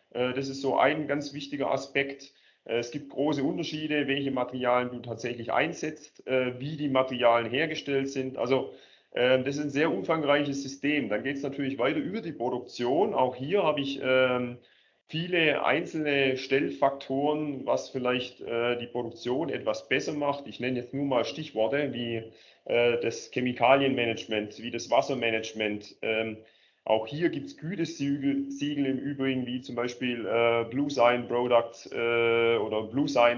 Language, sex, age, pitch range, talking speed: German, male, 30-49, 120-140 Hz, 145 wpm